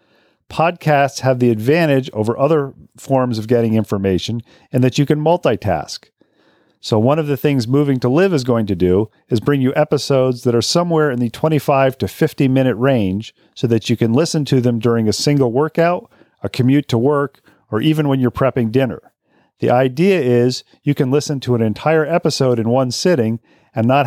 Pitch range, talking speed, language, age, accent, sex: 115-145 Hz, 190 wpm, English, 40-59, American, male